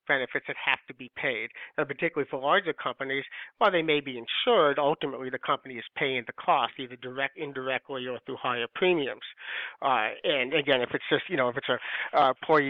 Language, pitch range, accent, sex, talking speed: English, 130-170 Hz, American, male, 200 wpm